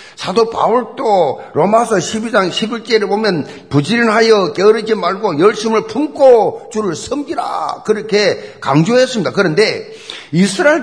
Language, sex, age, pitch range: Korean, male, 50-69, 185-240 Hz